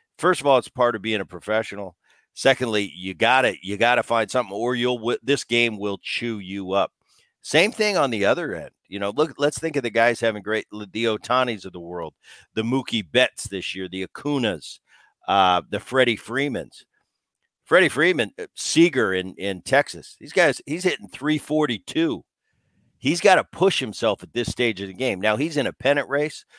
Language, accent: English, American